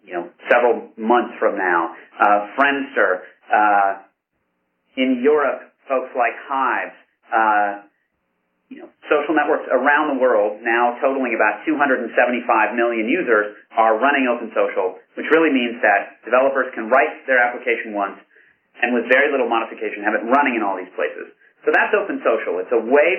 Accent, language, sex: American, English, male